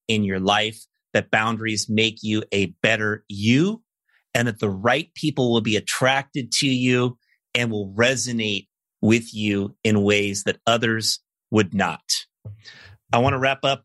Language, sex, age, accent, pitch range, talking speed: English, male, 30-49, American, 105-135 Hz, 150 wpm